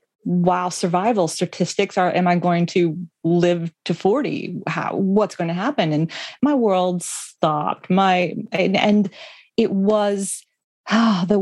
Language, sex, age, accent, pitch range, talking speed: English, female, 30-49, American, 165-205 Hz, 140 wpm